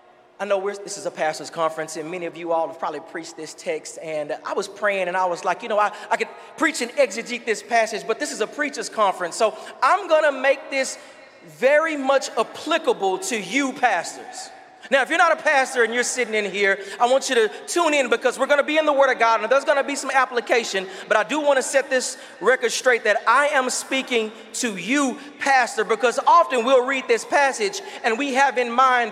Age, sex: 40-59, male